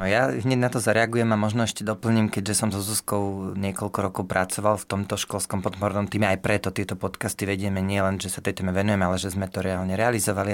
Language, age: Slovak, 30-49